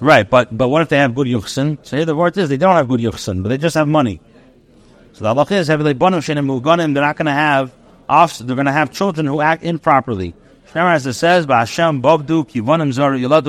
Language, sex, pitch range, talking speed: English, male, 135-175 Hz, 215 wpm